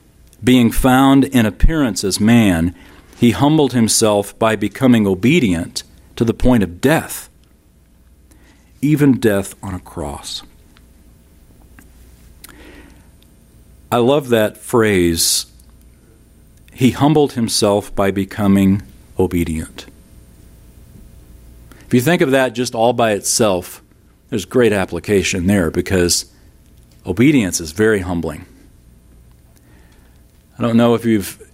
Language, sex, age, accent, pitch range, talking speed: English, male, 40-59, American, 80-110 Hz, 105 wpm